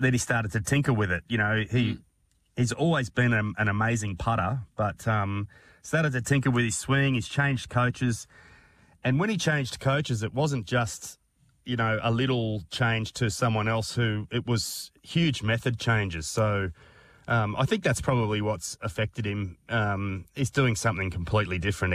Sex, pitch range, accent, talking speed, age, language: male, 100-125 Hz, Australian, 180 wpm, 30-49, English